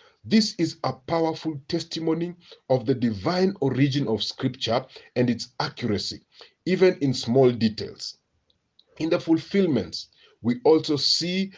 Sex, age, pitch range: male, 40-59, 120-165 Hz